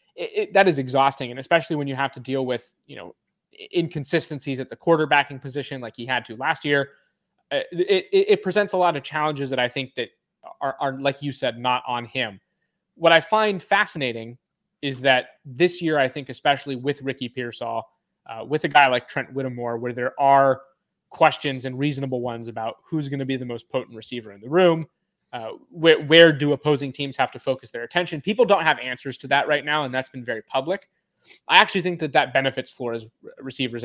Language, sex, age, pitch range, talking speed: English, male, 20-39, 125-155 Hz, 210 wpm